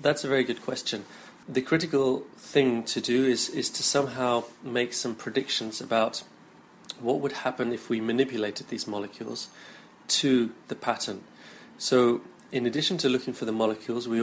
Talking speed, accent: 160 wpm, British